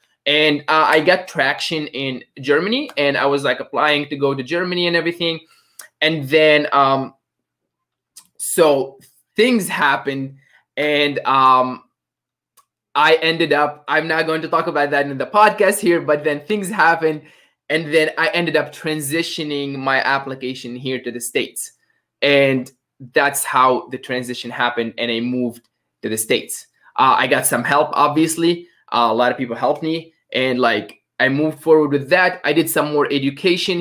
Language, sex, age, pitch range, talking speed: English, male, 20-39, 130-165 Hz, 165 wpm